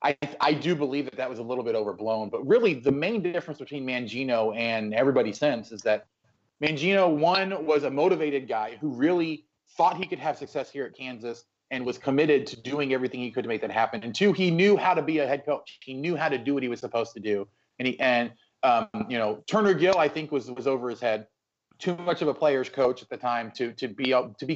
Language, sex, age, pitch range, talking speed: English, male, 30-49, 120-155 Hz, 245 wpm